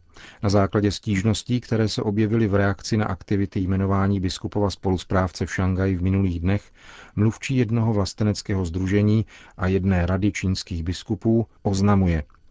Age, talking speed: 40-59, 135 wpm